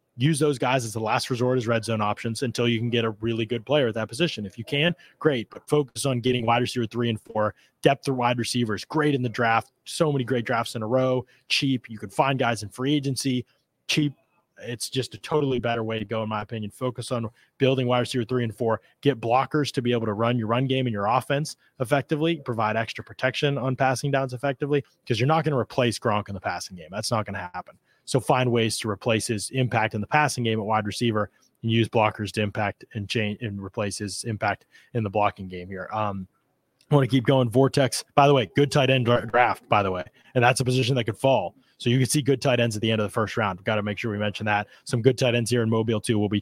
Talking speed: 260 wpm